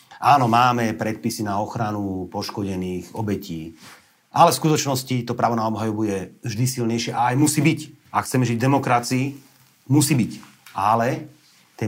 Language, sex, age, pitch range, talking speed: Slovak, male, 40-59, 100-125 Hz, 150 wpm